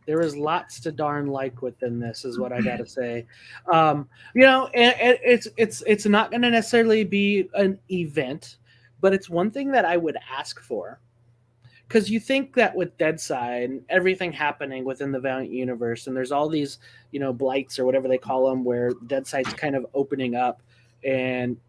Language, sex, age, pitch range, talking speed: English, male, 20-39, 125-175 Hz, 190 wpm